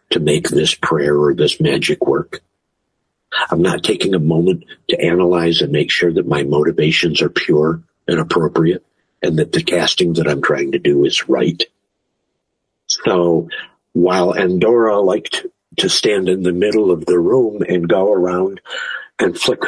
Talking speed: 160 wpm